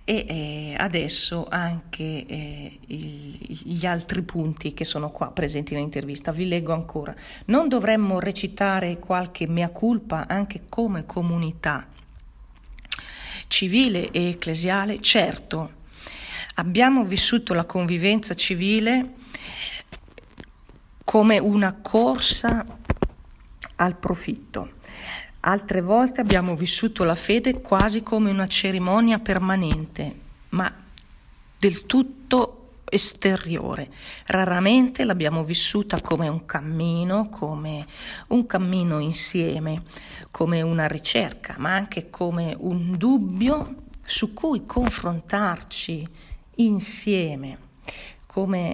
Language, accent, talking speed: Italian, native, 90 wpm